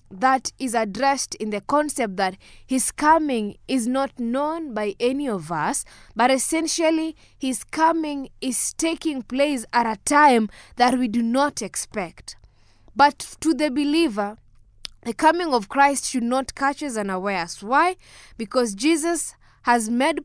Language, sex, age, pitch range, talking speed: English, female, 20-39, 205-275 Hz, 145 wpm